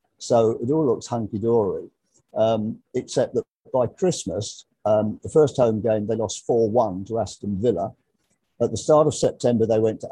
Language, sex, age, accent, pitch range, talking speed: English, male, 50-69, British, 105-120 Hz, 165 wpm